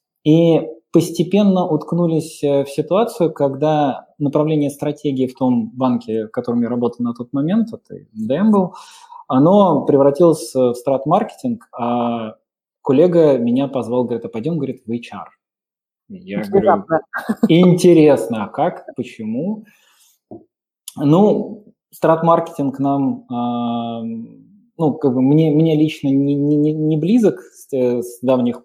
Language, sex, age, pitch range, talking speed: Russian, male, 20-39, 130-180 Hz, 115 wpm